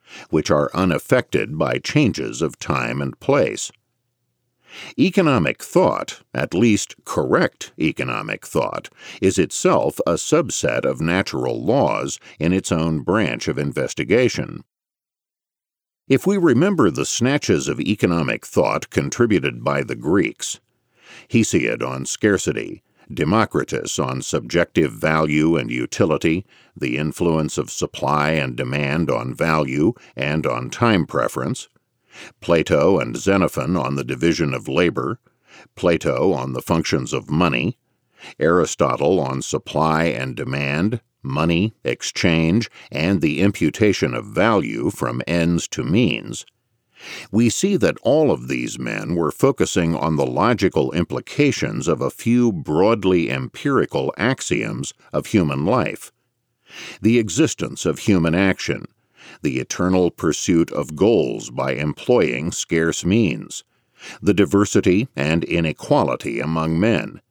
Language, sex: English, male